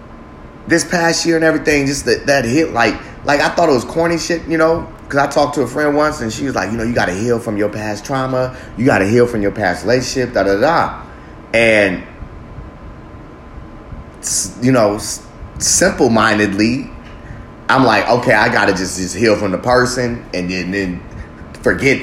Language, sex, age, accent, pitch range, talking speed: English, male, 30-49, American, 100-145 Hz, 195 wpm